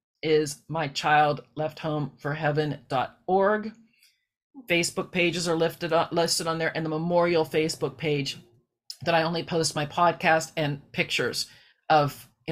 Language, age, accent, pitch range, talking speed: English, 40-59, American, 150-170 Hz, 110 wpm